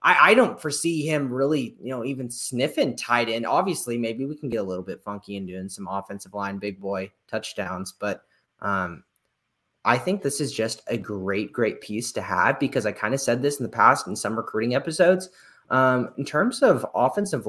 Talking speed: 200 wpm